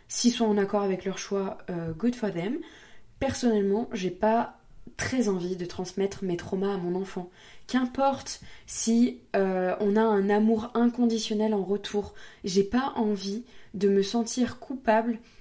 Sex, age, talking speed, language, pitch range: female, 20-39, 155 wpm, French, 195-230 Hz